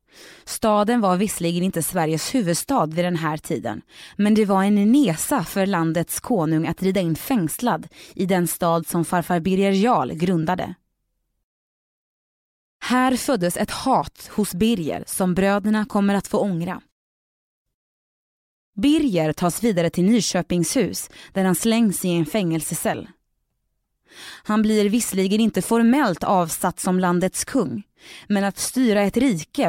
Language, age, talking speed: Swedish, 20-39, 135 wpm